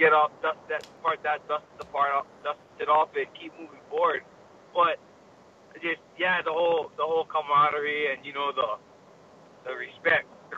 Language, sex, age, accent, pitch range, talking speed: English, male, 20-39, American, 145-185 Hz, 180 wpm